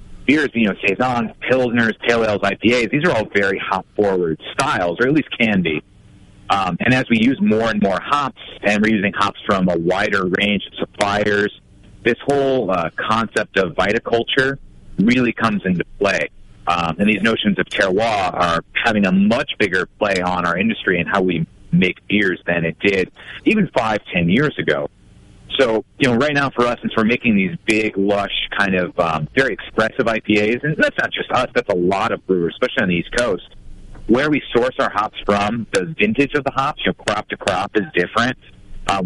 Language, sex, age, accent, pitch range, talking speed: English, male, 30-49, American, 95-125 Hz, 200 wpm